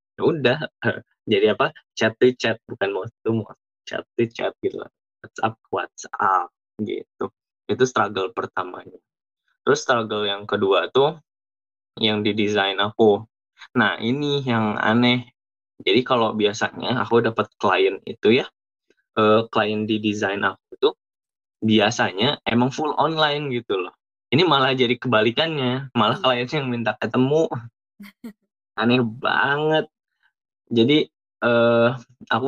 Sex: male